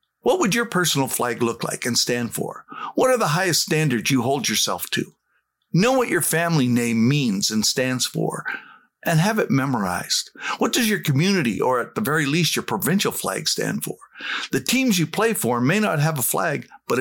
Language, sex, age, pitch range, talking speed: English, male, 50-69, 135-205 Hz, 200 wpm